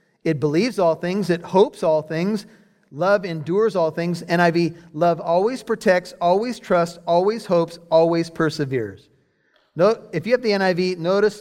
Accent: American